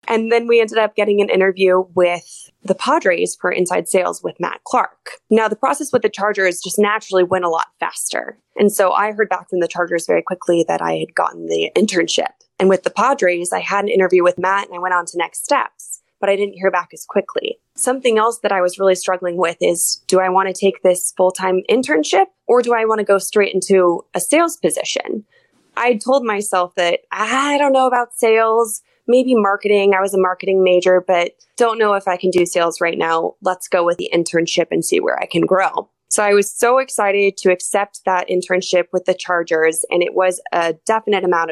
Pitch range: 180-225 Hz